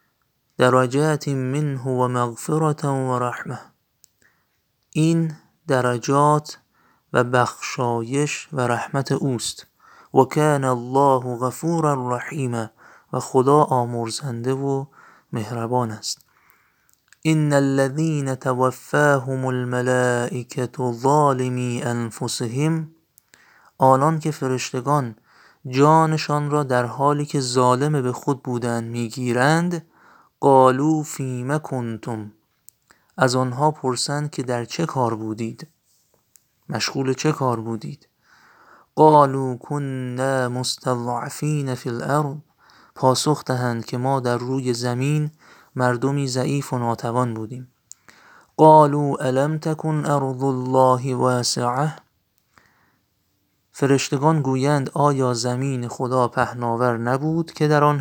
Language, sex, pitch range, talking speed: Persian, male, 125-145 Hz, 95 wpm